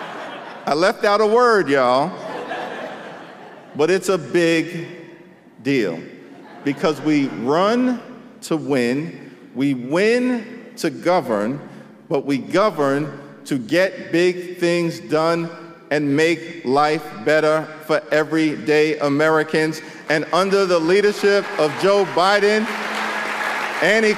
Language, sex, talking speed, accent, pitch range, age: English, male, 105 wpm, American, 170-220 Hz, 50-69